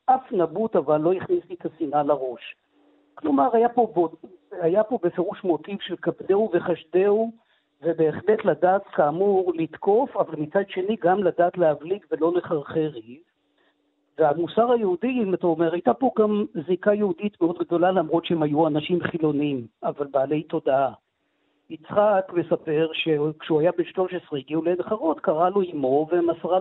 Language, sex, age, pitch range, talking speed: Hebrew, female, 50-69, 160-210 Hz, 145 wpm